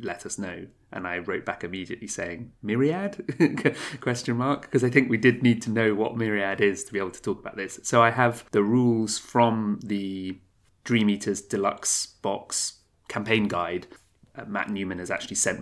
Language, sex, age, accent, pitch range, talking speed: English, male, 30-49, British, 110-135 Hz, 190 wpm